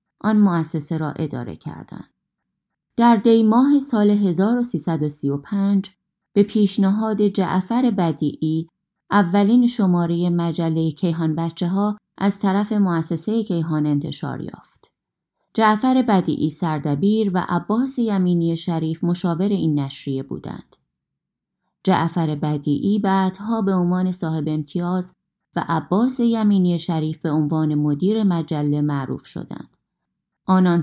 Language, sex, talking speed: Persian, female, 105 wpm